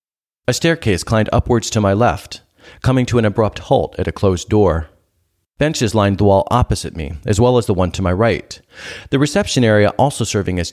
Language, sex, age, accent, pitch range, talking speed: English, male, 40-59, American, 95-125 Hz, 200 wpm